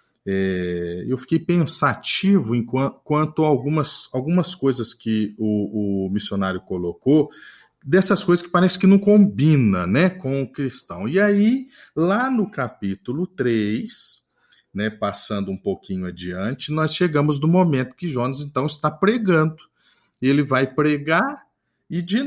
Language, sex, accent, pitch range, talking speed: Portuguese, male, Brazilian, 115-175 Hz, 135 wpm